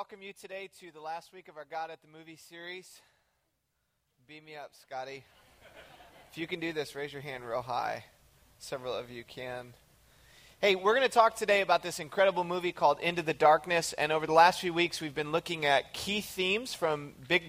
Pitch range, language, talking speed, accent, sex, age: 155-190 Hz, English, 205 wpm, American, male, 30-49